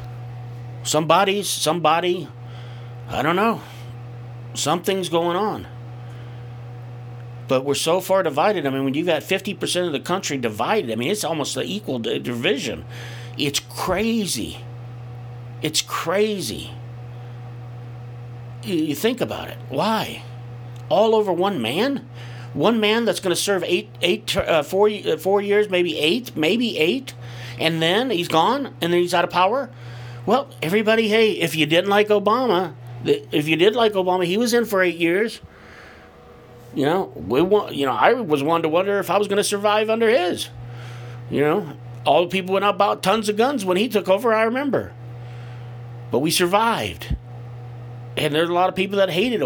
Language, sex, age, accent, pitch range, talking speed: English, male, 50-69, American, 120-200 Hz, 165 wpm